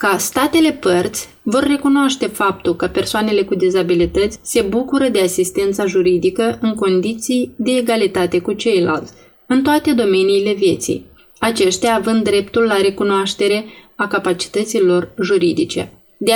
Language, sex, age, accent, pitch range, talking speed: Romanian, female, 20-39, native, 190-245 Hz, 125 wpm